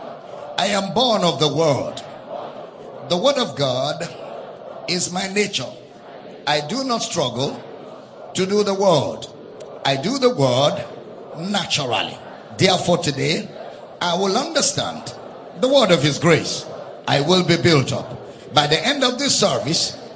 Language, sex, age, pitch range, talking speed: English, male, 50-69, 180-240 Hz, 140 wpm